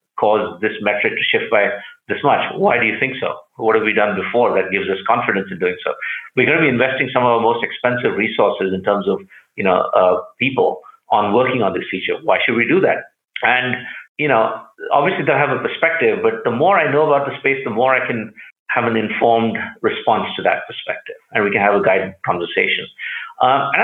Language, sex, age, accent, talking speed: English, male, 50-69, Indian, 225 wpm